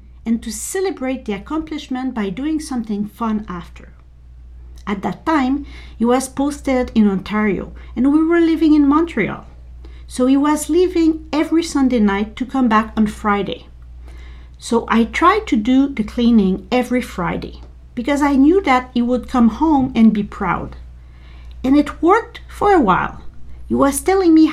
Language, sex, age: English, female, 50-69